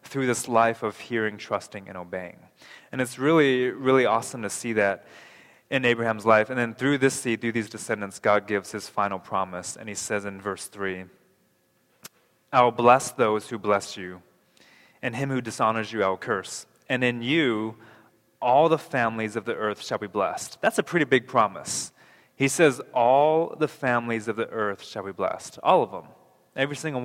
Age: 20-39